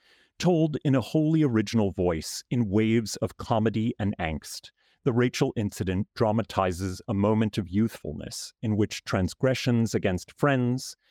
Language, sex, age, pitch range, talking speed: English, male, 40-59, 95-125 Hz, 135 wpm